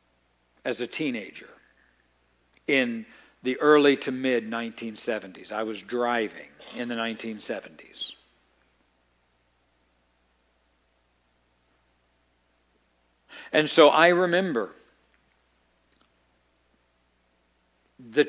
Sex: male